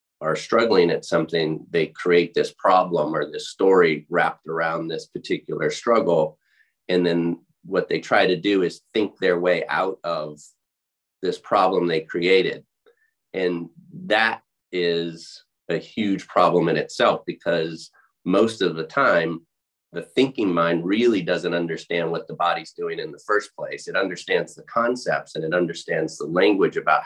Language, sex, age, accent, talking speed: English, male, 30-49, American, 155 wpm